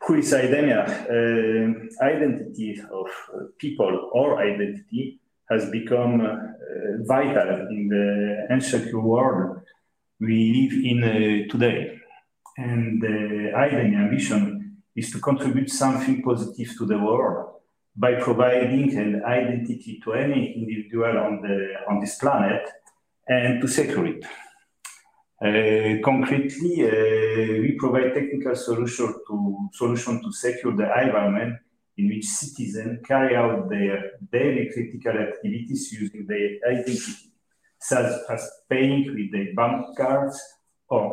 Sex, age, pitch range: male, 40-59, 110-130 Hz